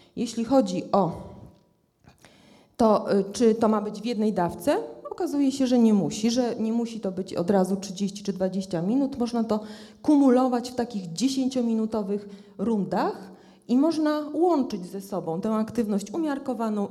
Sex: female